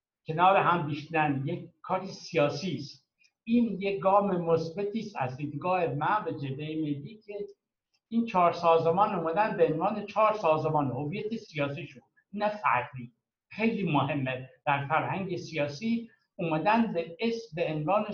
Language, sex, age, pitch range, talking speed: Persian, male, 60-79, 150-200 Hz, 135 wpm